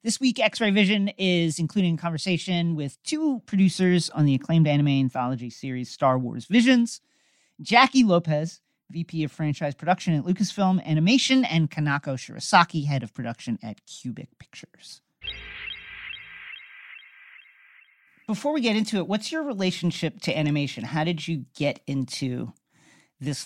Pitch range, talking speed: 135-195 Hz, 140 wpm